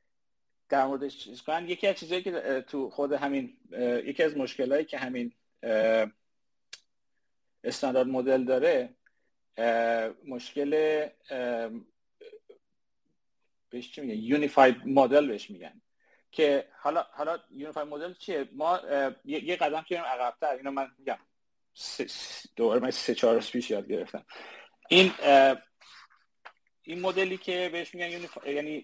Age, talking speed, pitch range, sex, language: 40-59, 105 wpm, 125-175 Hz, male, Persian